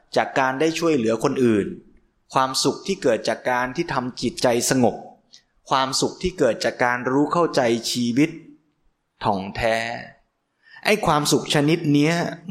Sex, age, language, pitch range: male, 20-39, Thai, 125-165 Hz